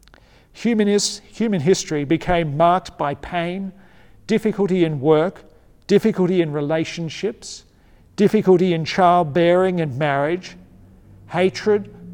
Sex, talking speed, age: male, 100 wpm, 50-69